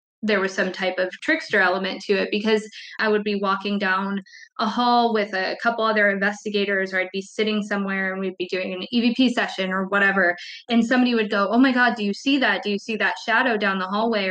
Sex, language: female, English